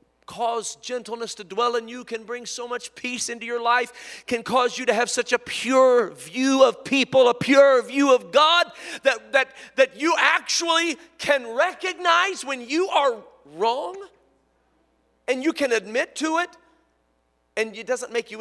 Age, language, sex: 40-59, English, male